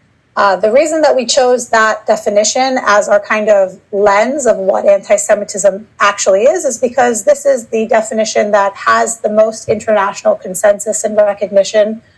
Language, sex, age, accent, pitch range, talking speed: English, female, 30-49, American, 205-270 Hz, 160 wpm